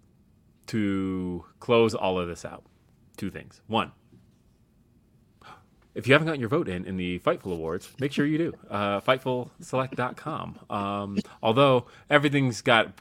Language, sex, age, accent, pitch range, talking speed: English, male, 30-49, American, 90-110 Hz, 140 wpm